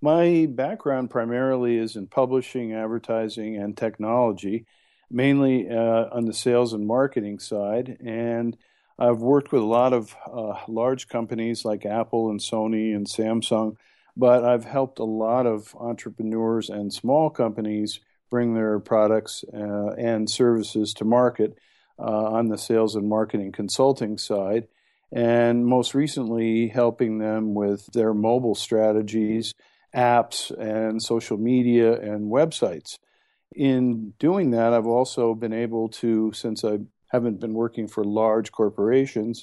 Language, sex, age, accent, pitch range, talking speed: English, male, 50-69, American, 110-120 Hz, 135 wpm